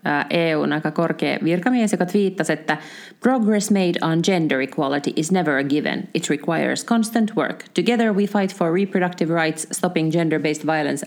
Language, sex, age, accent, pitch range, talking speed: Finnish, female, 30-49, native, 155-190 Hz, 165 wpm